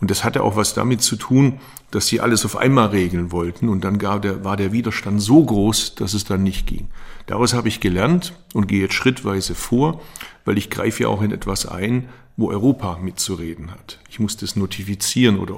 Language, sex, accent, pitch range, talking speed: German, male, German, 100-120 Hz, 210 wpm